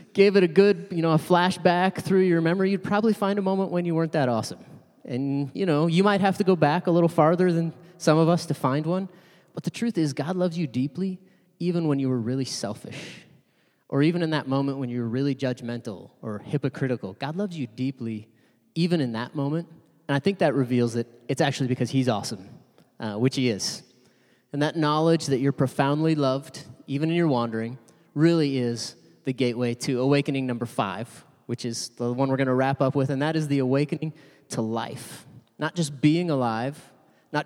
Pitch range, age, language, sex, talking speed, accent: 130-170 Hz, 20-39, English, male, 210 wpm, American